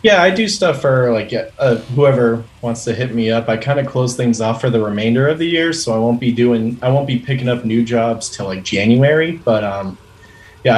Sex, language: male, English